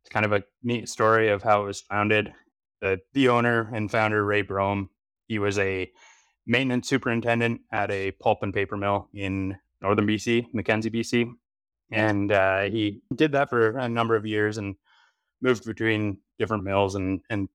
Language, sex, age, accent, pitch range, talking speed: English, male, 20-39, American, 95-110 Hz, 175 wpm